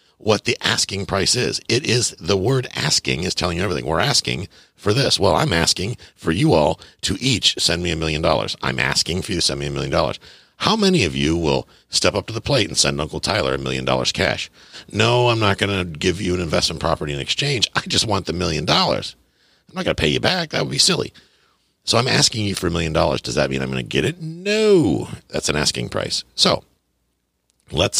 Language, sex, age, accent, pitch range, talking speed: English, male, 50-69, American, 70-100 Hz, 240 wpm